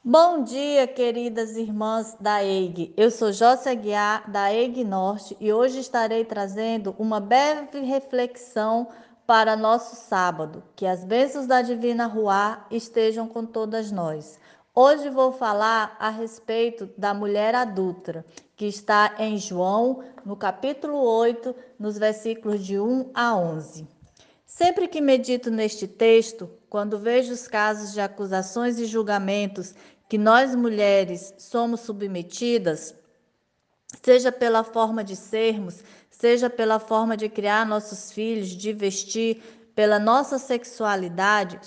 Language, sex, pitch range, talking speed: Portuguese, female, 205-245 Hz, 130 wpm